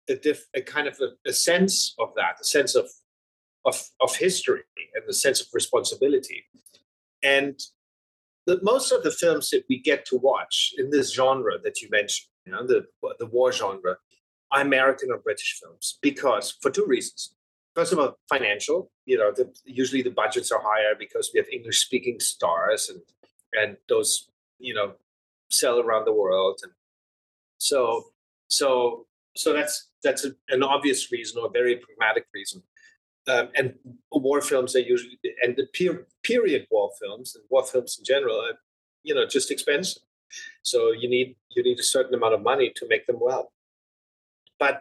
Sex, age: male, 30-49